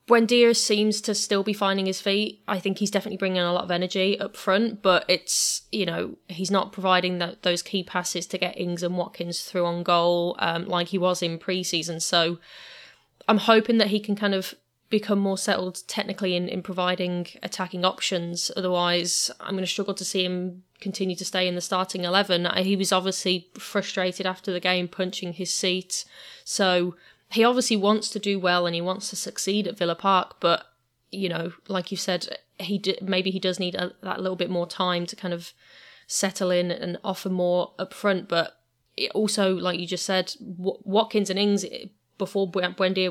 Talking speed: 200 wpm